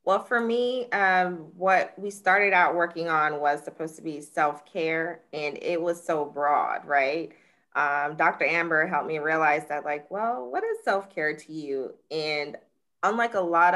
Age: 20-39